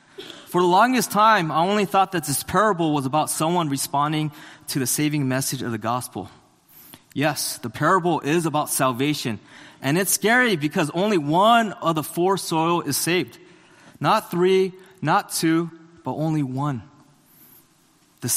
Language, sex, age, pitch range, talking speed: English, male, 20-39, 135-175 Hz, 155 wpm